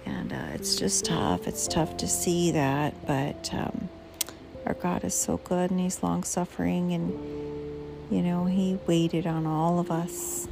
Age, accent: 40-59, American